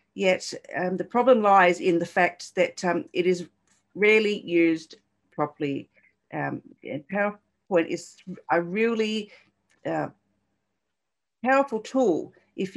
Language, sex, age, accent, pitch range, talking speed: English, female, 50-69, Australian, 170-210 Hz, 115 wpm